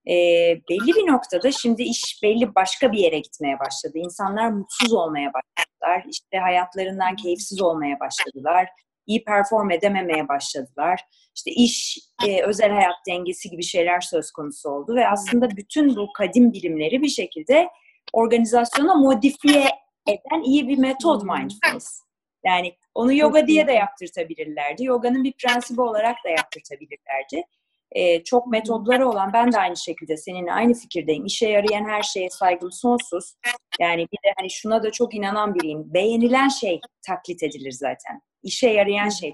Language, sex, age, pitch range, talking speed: Turkish, female, 30-49, 175-260 Hz, 150 wpm